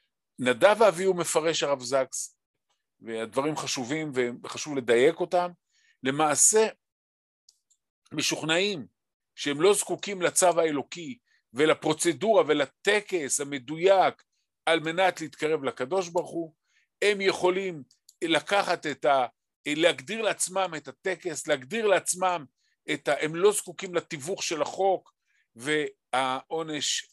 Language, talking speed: Hebrew, 105 wpm